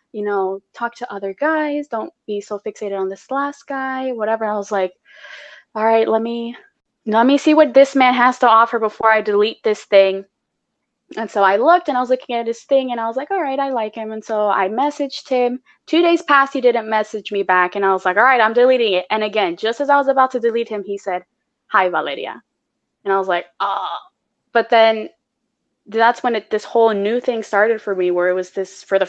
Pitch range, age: 195-255 Hz, 20-39